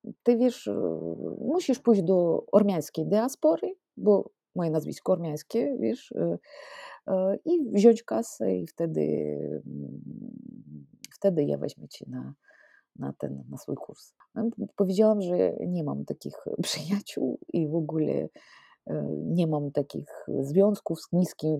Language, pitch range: Polish, 145-205 Hz